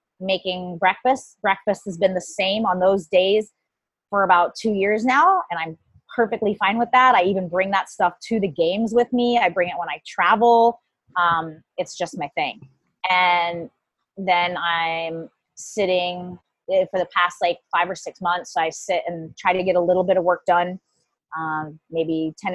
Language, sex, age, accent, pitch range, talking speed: English, female, 20-39, American, 175-210 Hz, 185 wpm